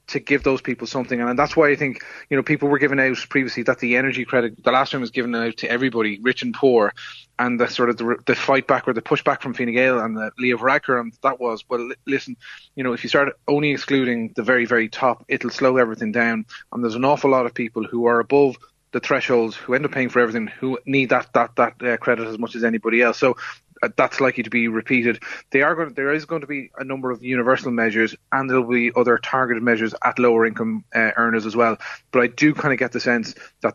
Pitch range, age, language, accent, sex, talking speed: 115-130 Hz, 30-49, English, Irish, male, 250 wpm